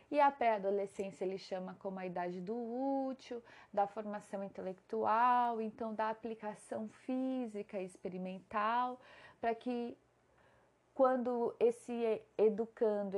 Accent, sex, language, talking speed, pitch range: Brazilian, female, Portuguese, 110 wpm, 190-240 Hz